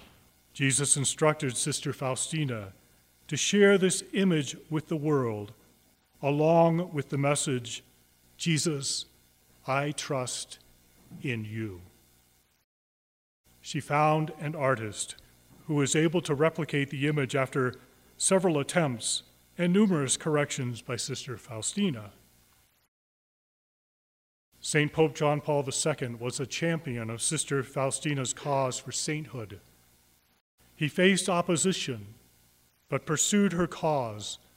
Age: 40-59